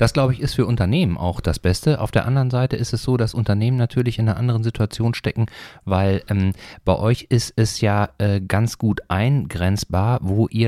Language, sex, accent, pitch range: German, male, German, 90-110 Hz